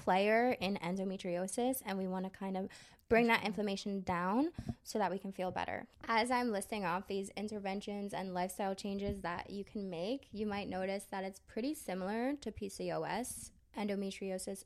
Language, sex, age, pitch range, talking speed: English, female, 20-39, 180-205 Hz, 170 wpm